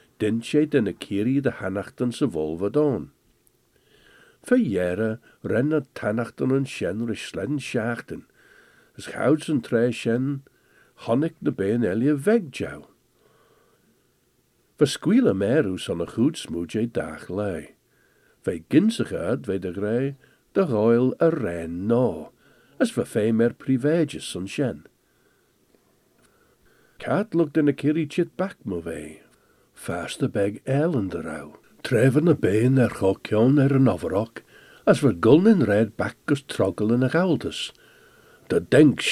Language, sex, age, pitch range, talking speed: English, male, 60-79, 110-165 Hz, 150 wpm